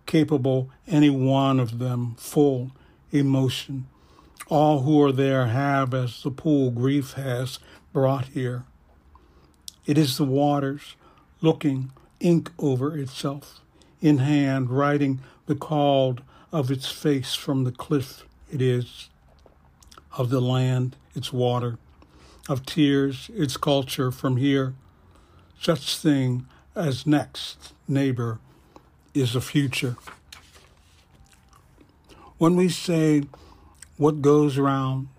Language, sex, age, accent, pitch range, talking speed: English, male, 60-79, American, 120-145 Hz, 110 wpm